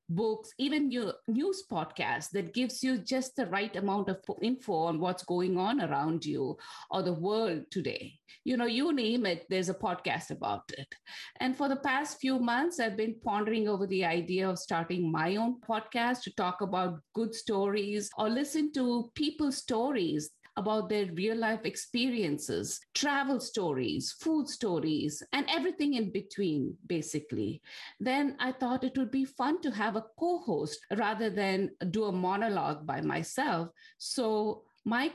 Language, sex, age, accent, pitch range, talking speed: English, female, 50-69, Indian, 190-250 Hz, 160 wpm